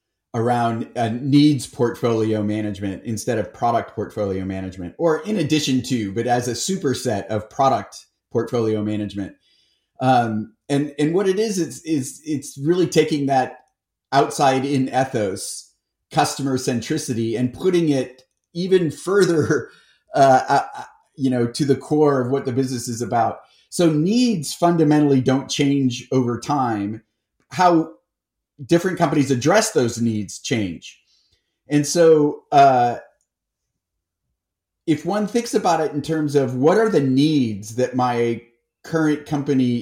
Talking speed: 135 wpm